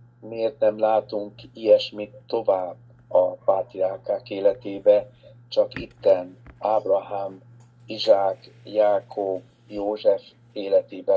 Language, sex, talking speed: Hungarian, male, 80 wpm